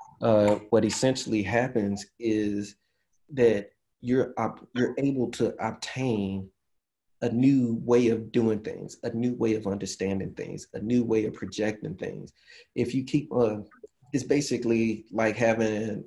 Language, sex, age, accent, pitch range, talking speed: English, male, 30-49, American, 110-120 Hz, 145 wpm